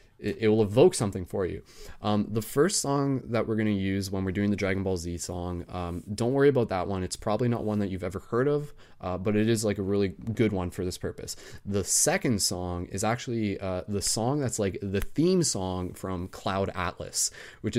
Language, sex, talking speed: English, male, 225 wpm